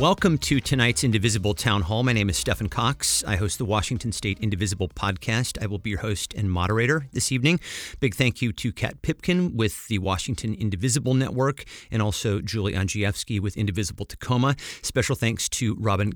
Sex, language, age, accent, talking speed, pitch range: male, English, 40-59, American, 180 wpm, 95-125 Hz